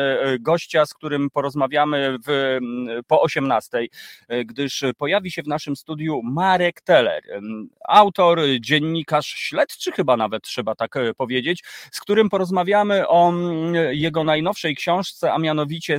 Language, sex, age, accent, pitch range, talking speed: Polish, male, 30-49, native, 135-175 Hz, 120 wpm